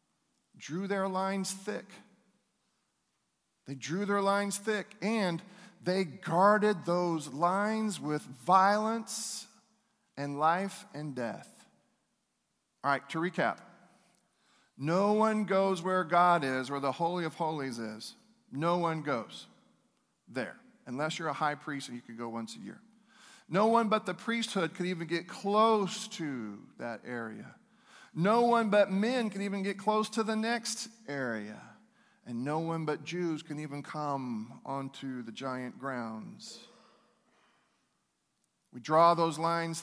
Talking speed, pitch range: 140 wpm, 140-200 Hz